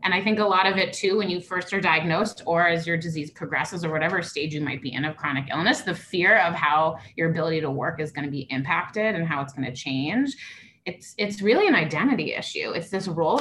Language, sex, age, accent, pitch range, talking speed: English, female, 20-39, American, 155-200 Hz, 240 wpm